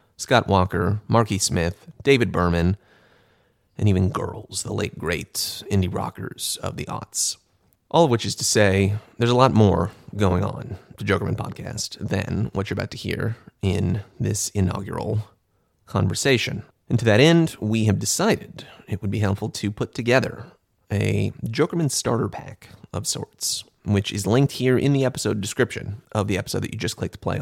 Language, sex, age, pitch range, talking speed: English, male, 30-49, 95-115 Hz, 175 wpm